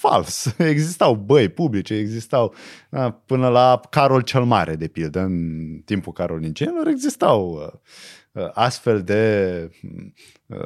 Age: 20-39